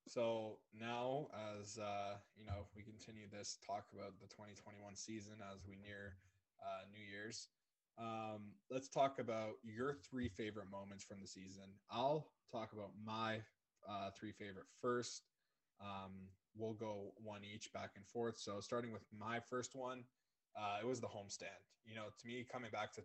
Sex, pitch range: male, 100-115 Hz